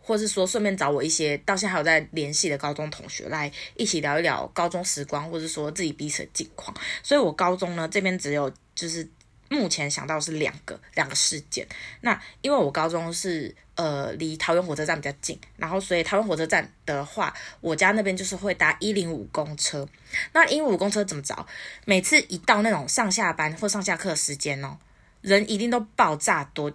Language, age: Chinese, 20-39